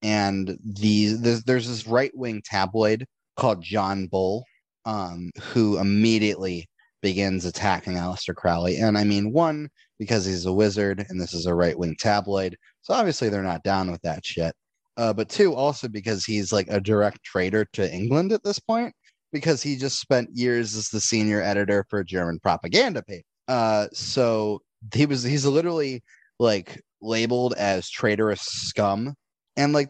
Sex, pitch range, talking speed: male, 95-115 Hz, 165 wpm